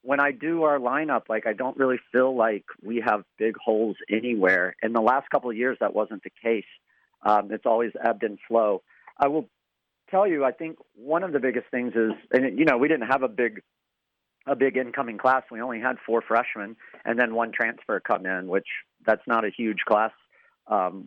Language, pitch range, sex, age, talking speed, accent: English, 105-130 Hz, male, 40-59, 210 wpm, American